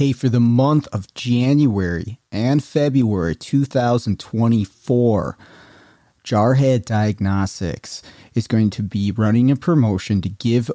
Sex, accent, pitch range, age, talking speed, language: male, American, 105-130 Hz, 30-49, 110 wpm, English